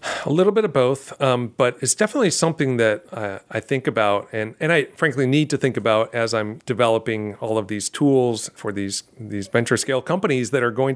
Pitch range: 115-145 Hz